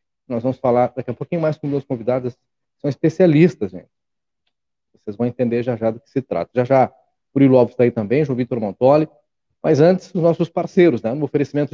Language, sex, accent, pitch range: Portuguese, male, Brazilian, 120-150 Hz